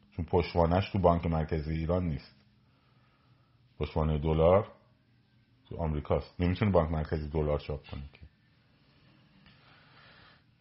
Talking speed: 95 wpm